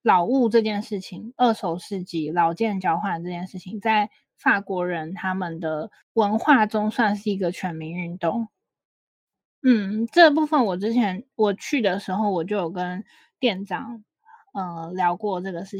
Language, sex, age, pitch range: Chinese, female, 20-39, 185-230 Hz